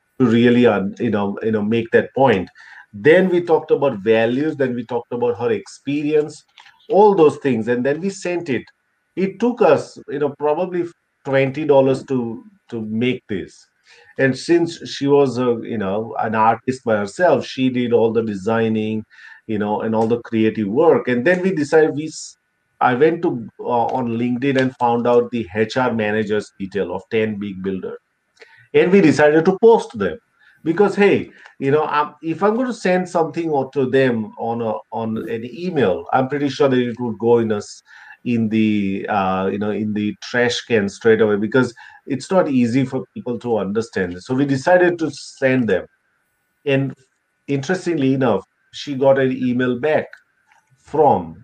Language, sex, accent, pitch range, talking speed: English, male, Indian, 115-150 Hz, 175 wpm